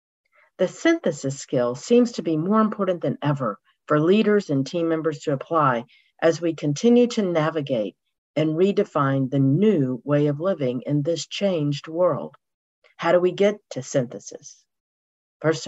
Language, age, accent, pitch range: English, 50-69, American, 145-205 Hz